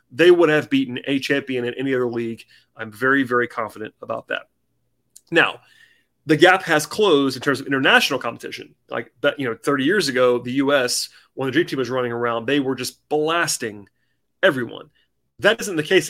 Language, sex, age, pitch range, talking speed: English, male, 30-49, 125-155 Hz, 195 wpm